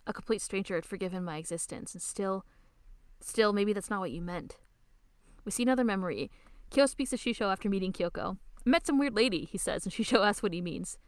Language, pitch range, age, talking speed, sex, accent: English, 180-230 Hz, 20-39, 215 wpm, female, American